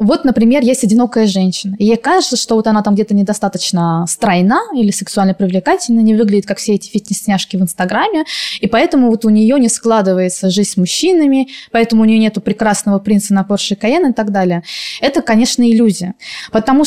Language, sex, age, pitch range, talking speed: Russian, female, 20-39, 205-245 Hz, 180 wpm